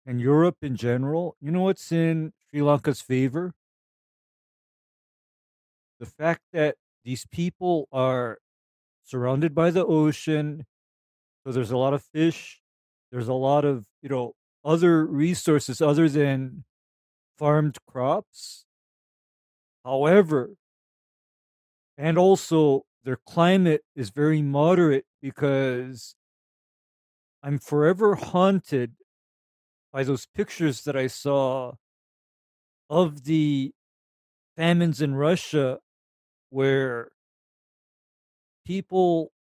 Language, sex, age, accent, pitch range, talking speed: English, male, 40-59, American, 130-160 Hz, 95 wpm